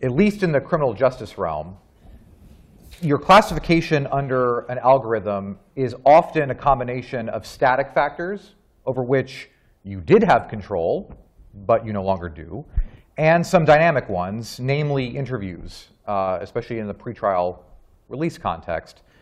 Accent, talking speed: American, 135 wpm